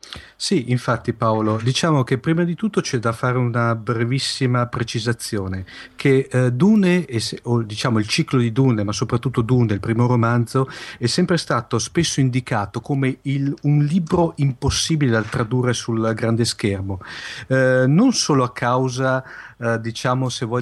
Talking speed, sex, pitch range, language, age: 145 wpm, male, 115-135 Hz, Italian, 40-59